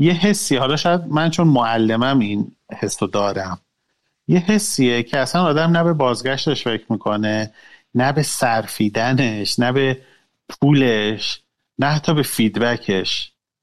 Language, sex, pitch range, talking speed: Persian, male, 110-155 Hz, 130 wpm